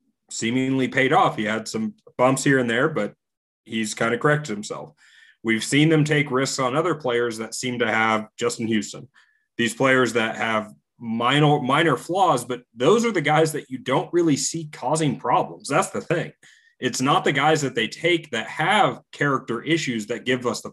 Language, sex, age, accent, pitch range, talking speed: English, male, 30-49, American, 110-145 Hz, 195 wpm